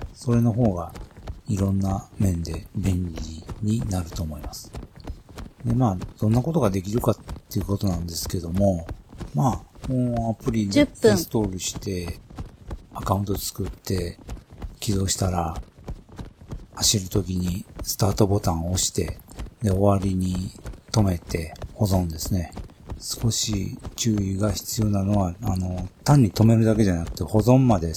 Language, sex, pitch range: Japanese, male, 90-110 Hz